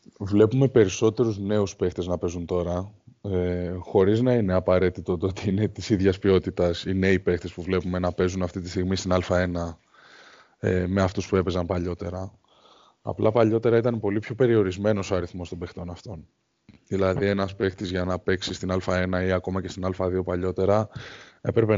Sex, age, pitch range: male, 20-39, 90-105 Hz